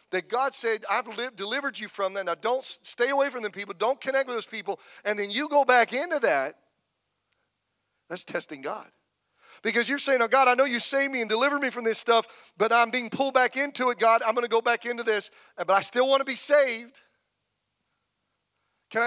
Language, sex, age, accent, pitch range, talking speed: English, male, 40-59, American, 185-255 Hz, 215 wpm